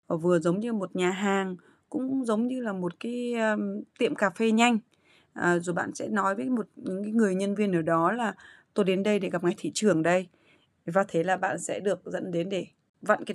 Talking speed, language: 230 wpm, Vietnamese